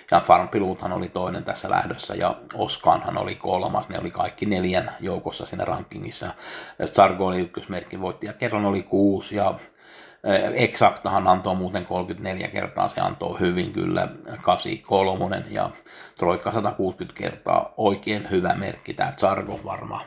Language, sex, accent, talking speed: Finnish, male, native, 135 wpm